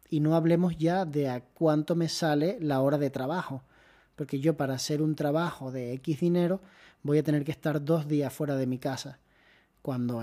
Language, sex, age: Spanish, male, 30-49